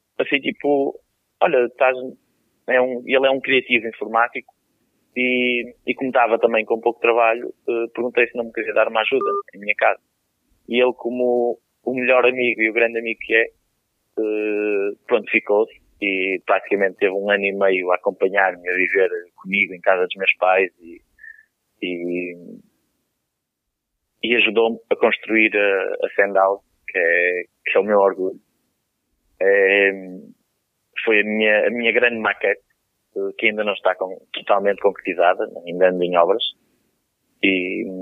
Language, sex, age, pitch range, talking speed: Portuguese, male, 20-39, 100-140 Hz, 155 wpm